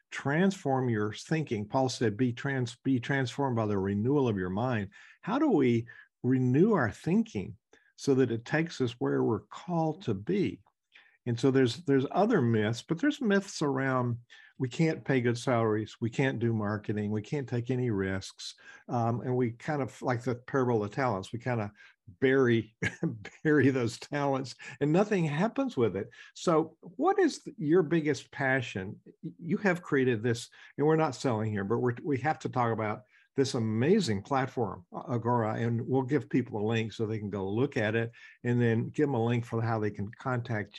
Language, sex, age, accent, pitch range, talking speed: English, male, 50-69, American, 115-150 Hz, 185 wpm